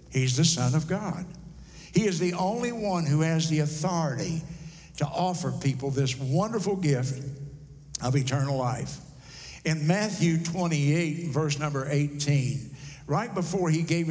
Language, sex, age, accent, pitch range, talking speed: English, male, 60-79, American, 140-170 Hz, 140 wpm